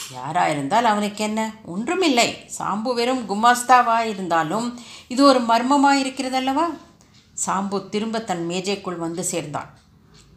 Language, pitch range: Tamil, 175-240 Hz